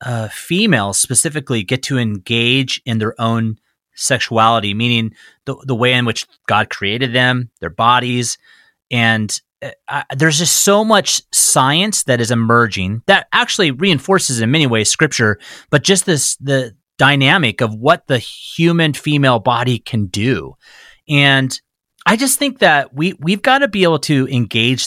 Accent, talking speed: American, 160 wpm